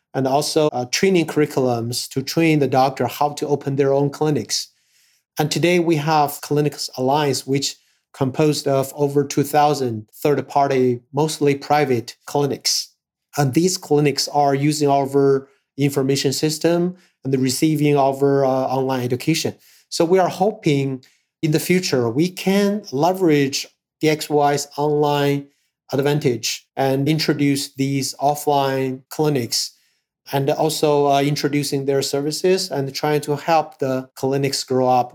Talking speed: 130 wpm